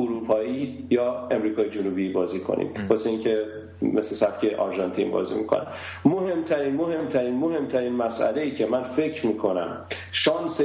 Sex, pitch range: male, 110-135 Hz